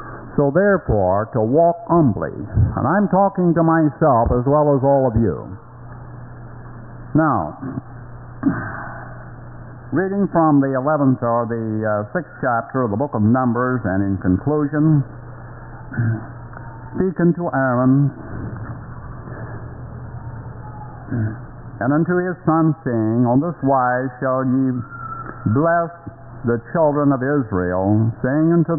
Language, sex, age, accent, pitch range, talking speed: English, male, 60-79, American, 115-140 Hz, 115 wpm